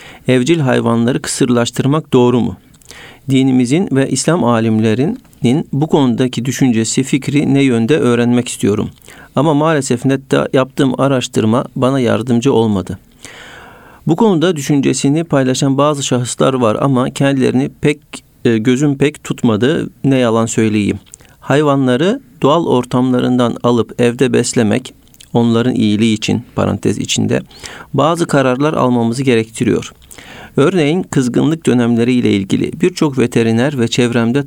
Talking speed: 110 wpm